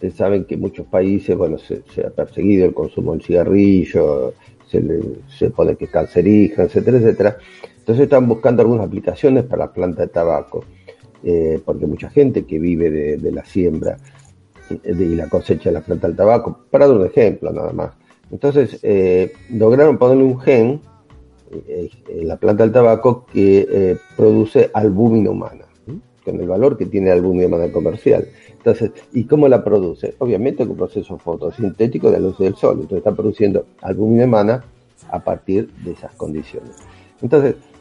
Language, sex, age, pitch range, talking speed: Spanish, male, 50-69, 95-135 Hz, 170 wpm